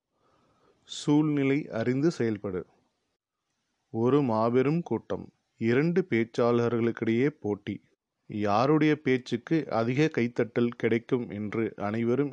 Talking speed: 80 wpm